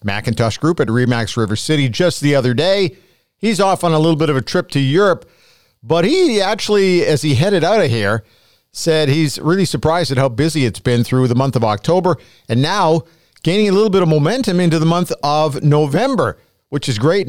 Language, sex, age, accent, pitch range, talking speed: English, male, 50-69, American, 130-175 Hz, 210 wpm